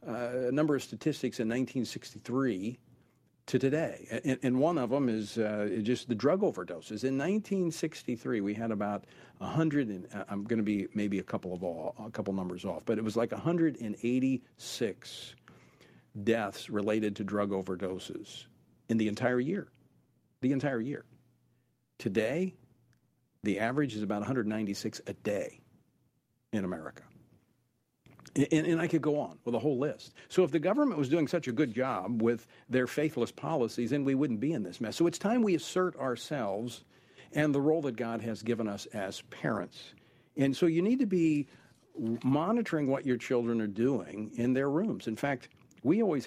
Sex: male